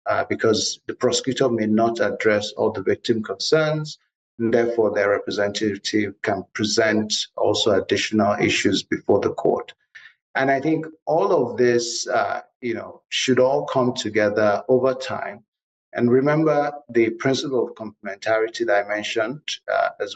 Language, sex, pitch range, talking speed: English, male, 110-135 Hz, 145 wpm